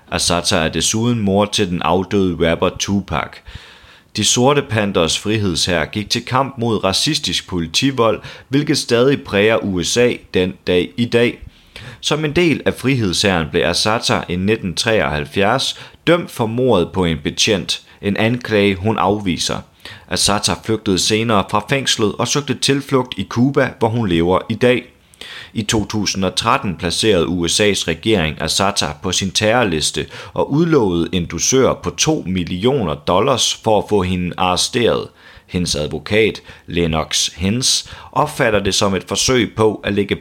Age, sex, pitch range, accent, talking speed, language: 30-49, male, 90-120 Hz, native, 140 wpm, Danish